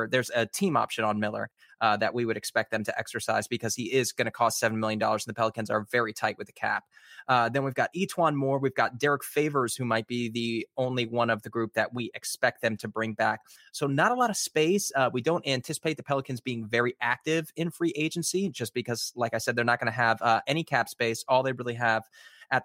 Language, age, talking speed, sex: English, 20-39, 250 wpm, male